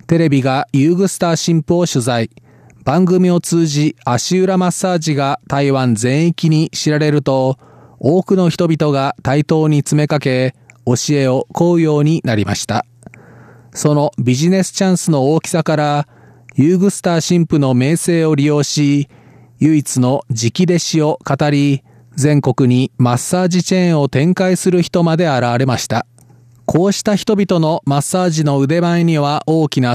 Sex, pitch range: male, 130-170 Hz